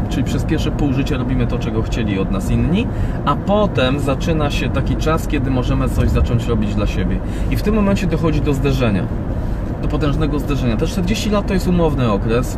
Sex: male